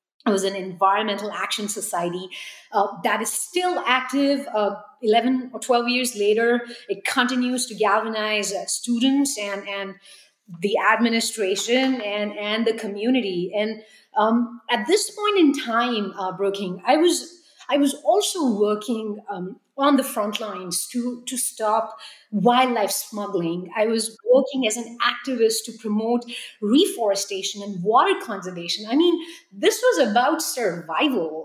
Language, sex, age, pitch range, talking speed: English, female, 30-49, 215-275 Hz, 140 wpm